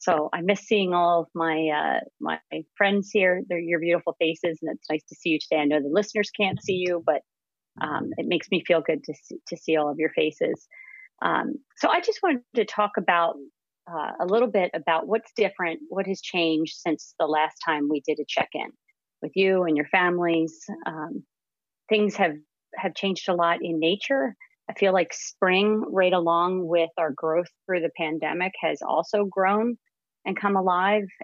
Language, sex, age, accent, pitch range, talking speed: English, female, 40-59, American, 160-200 Hz, 195 wpm